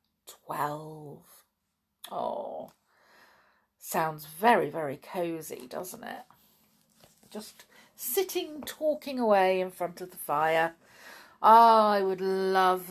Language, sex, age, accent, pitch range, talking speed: English, female, 50-69, British, 185-295 Hz, 100 wpm